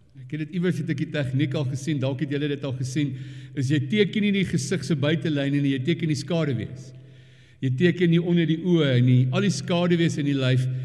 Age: 60-79